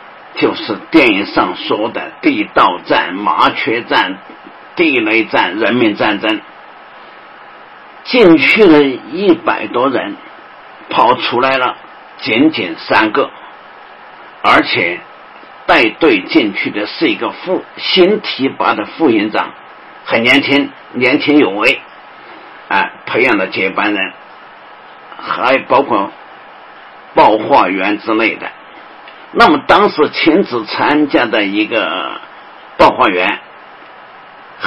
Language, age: Chinese, 50-69